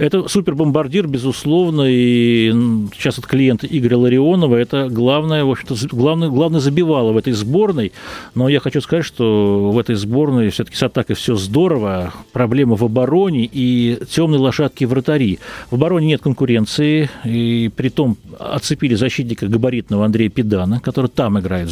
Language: Russian